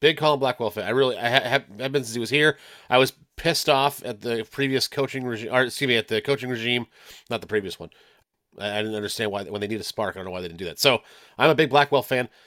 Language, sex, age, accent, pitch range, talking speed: English, male, 30-49, American, 125-175 Hz, 280 wpm